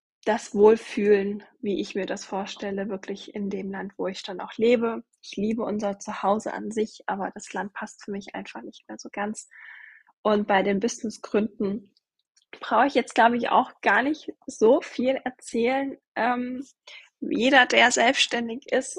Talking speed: 170 wpm